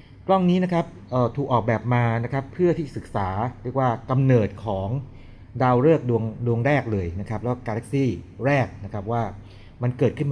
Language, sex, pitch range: Thai, male, 100-130 Hz